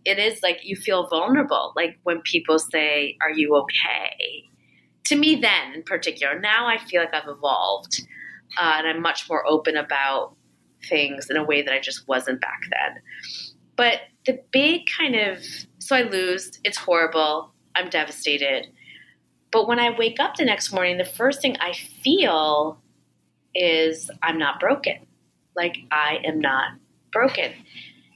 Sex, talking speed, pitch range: female, 160 wpm, 160-240 Hz